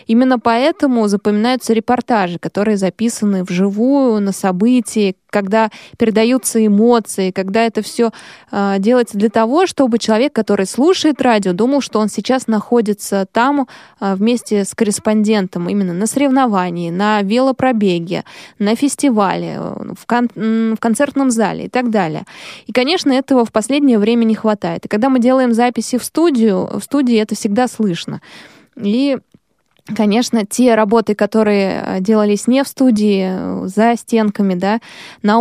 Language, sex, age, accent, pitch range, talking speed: Russian, female, 20-39, native, 205-245 Hz, 135 wpm